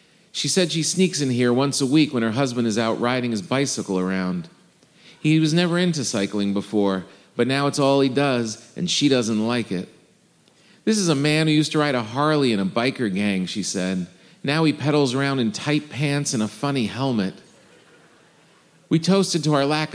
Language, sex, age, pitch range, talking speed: English, male, 40-59, 110-140 Hz, 200 wpm